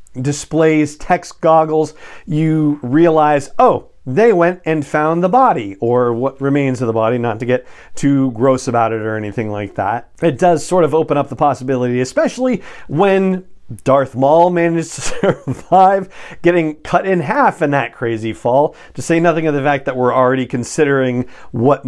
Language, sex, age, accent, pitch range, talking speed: English, male, 40-59, American, 125-165 Hz, 175 wpm